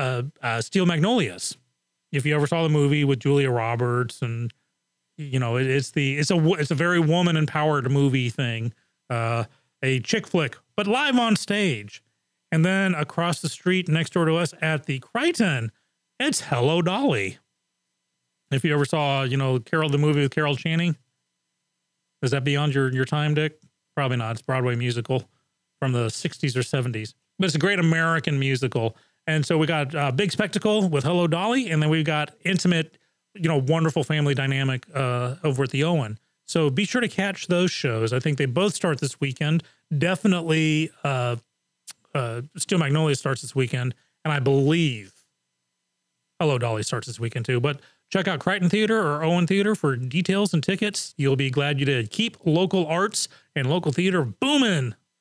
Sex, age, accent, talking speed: male, 40-59, American, 180 wpm